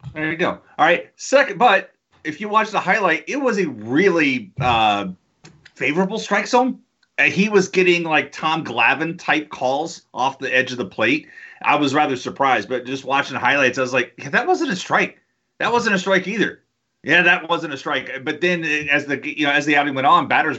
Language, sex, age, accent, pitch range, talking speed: English, male, 30-49, American, 130-170 Hz, 210 wpm